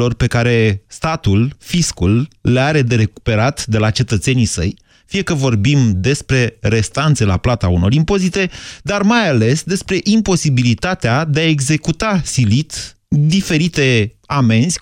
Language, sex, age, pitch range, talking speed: Romanian, male, 30-49, 110-160 Hz, 130 wpm